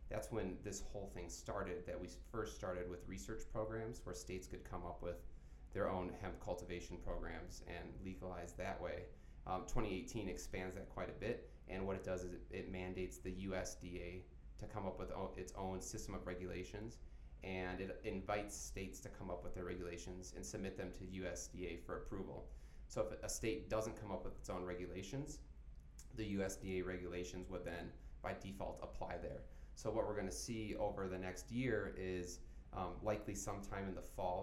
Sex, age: male, 30-49